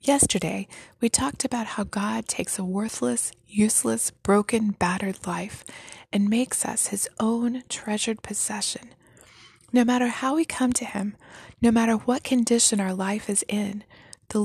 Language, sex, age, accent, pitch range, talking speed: English, female, 20-39, American, 200-235 Hz, 150 wpm